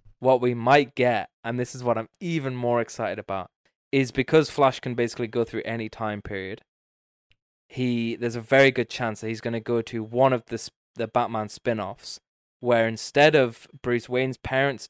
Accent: British